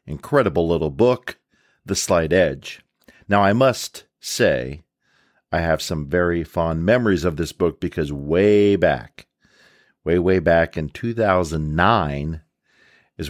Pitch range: 80-100 Hz